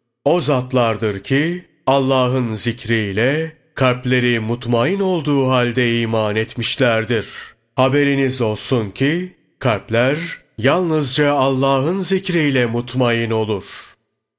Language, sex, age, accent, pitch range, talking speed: Turkish, male, 30-49, native, 115-145 Hz, 85 wpm